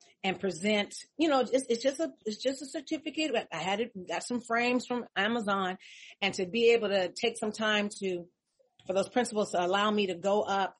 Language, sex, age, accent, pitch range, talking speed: English, female, 40-59, American, 180-225 Hz, 215 wpm